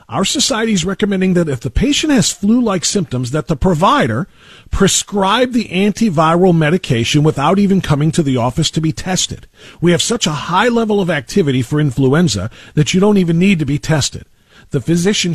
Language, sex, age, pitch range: English, male, 50-69, 130-185 Hz